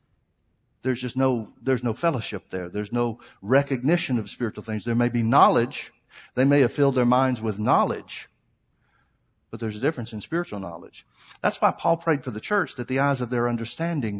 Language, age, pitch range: English, 60-79, 115-145 Hz